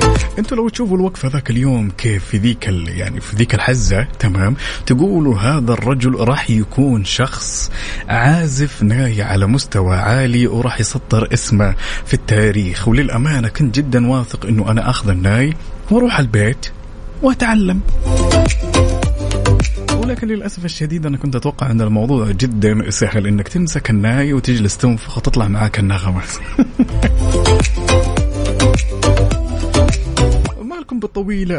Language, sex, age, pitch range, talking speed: Arabic, male, 30-49, 100-130 Hz, 115 wpm